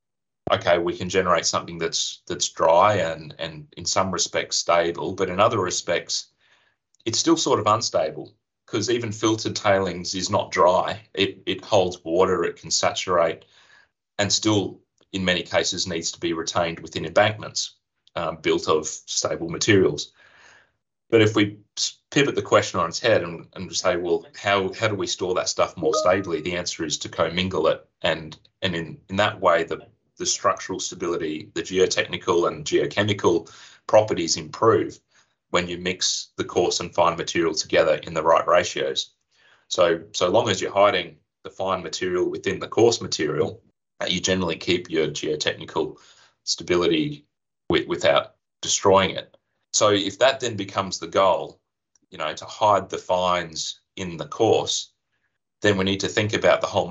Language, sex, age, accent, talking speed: English, male, 30-49, Australian, 165 wpm